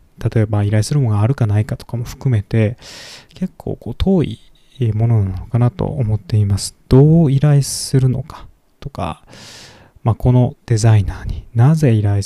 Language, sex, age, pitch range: Japanese, male, 20-39, 110-140 Hz